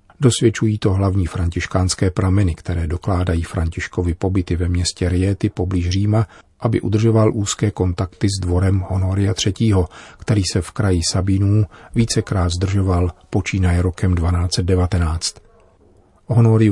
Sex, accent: male, native